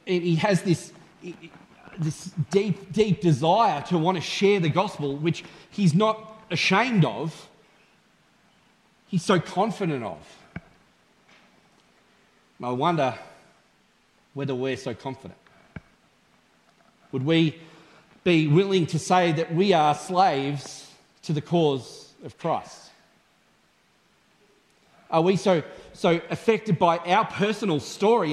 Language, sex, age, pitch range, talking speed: English, male, 30-49, 160-200 Hz, 110 wpm